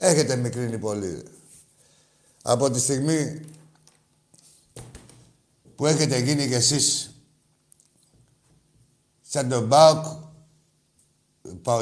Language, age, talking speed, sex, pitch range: Greek, 60-79, 75 wpm, male, 115-150 Hz